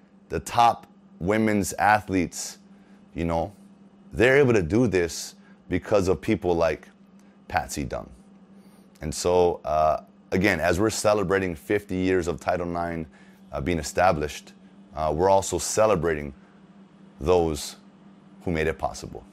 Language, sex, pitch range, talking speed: English, male, 90-140 Hz, 125 wpm